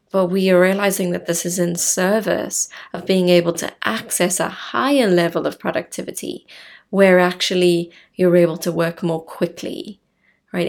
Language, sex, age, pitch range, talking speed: English, female, 20-39, 175-195 Hz, 155 wpm